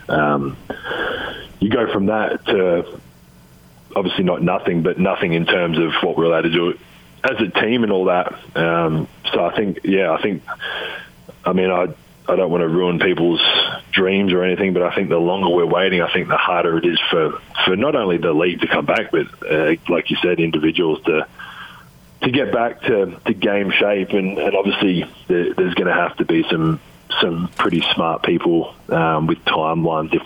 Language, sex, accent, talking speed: English, male, Australian, 195 wpm